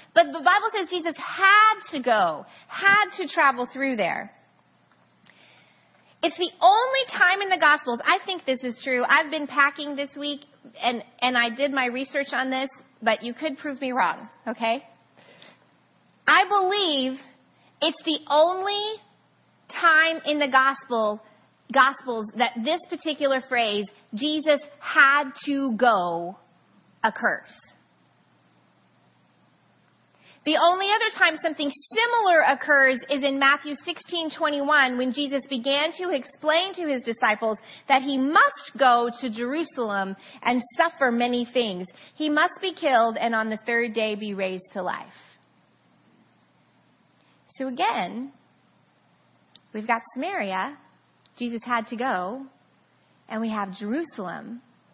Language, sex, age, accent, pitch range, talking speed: English, female, 30-49, American, 235-315 Hz, 130 wpm